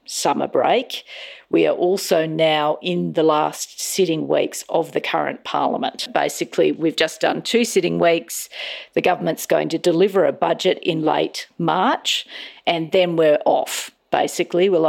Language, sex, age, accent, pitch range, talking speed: English, female, 50-69, Australian, 155-210 Hz, 155 wpm